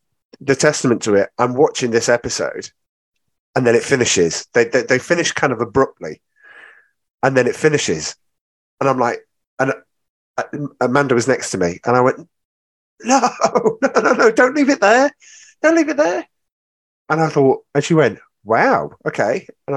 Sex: male